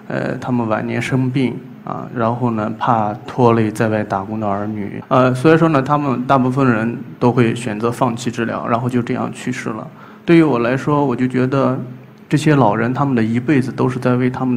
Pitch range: 115-130 Hz